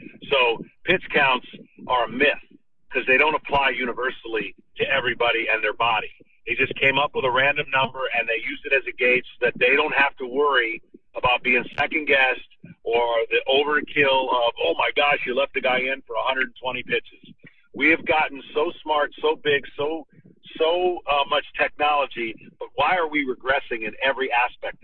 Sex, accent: male, American